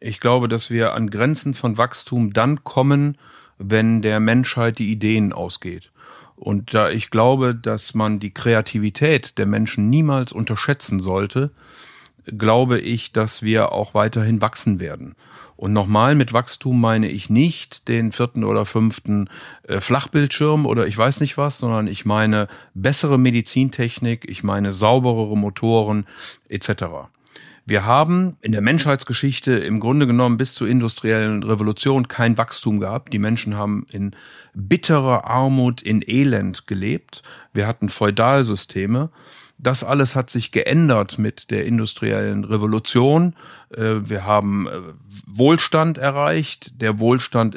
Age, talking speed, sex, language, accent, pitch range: 50-69, 135 wpm, male, German, German, 105-130 Hz